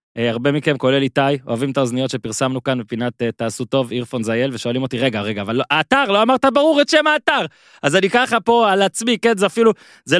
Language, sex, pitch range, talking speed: Hebrew, male, 125-195 Hz, 220 wpm